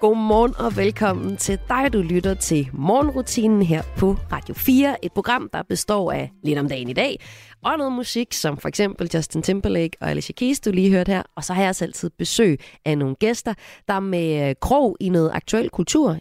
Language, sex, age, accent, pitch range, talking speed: Danish, female, 30-49, native, 150-215 Hz, 200 wpm